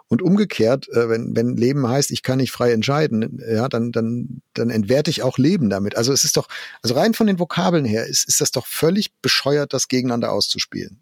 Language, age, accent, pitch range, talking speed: German, 50-69, German, 110-145 Hz, 210 wpm